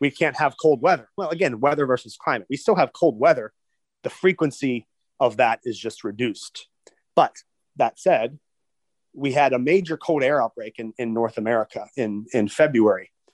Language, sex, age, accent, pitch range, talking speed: English, male, 30-49, American, 110-140 Hz, 175 wpm